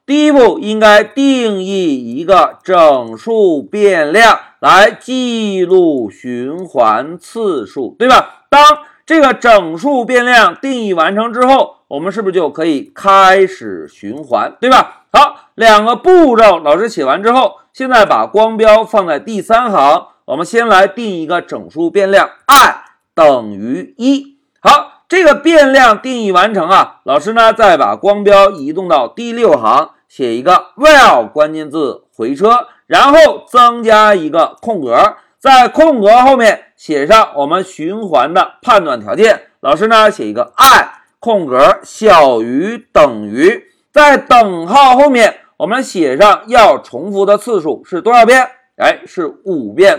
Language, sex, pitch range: Chinese, male, 210-300 Hz